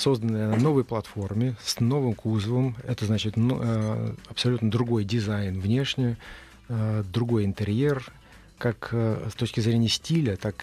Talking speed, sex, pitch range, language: 120 wpm, male, 110-130 Hz, Russian